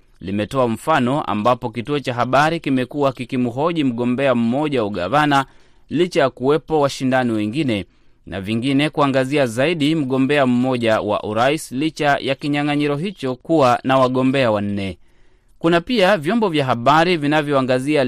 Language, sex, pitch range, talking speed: Swahili, male, 120-145 Hz, 135 wpm